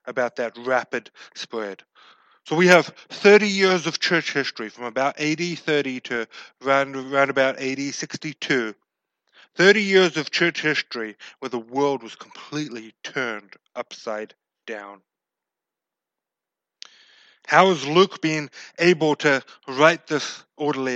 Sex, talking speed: male, 125 wpm